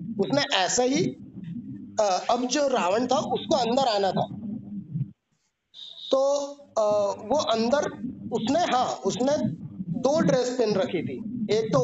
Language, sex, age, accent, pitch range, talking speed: Hindi, male, 30-49, native, 195-250 Hz, 130 wpm